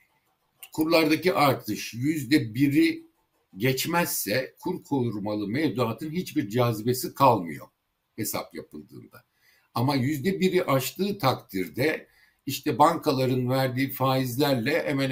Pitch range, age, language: 110-150 Hz, 60-79, Turkish